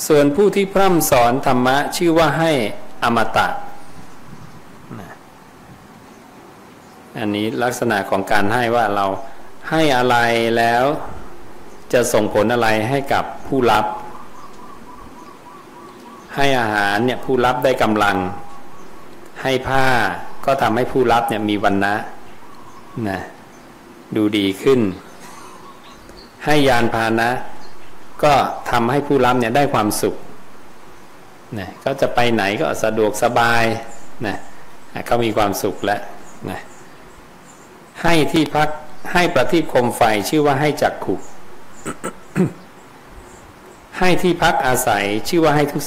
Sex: male